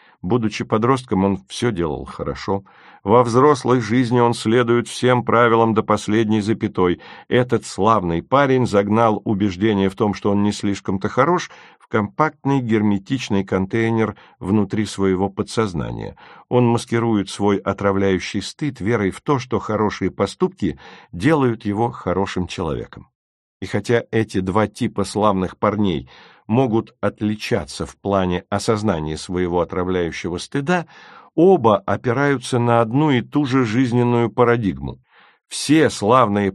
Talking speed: 125 wpm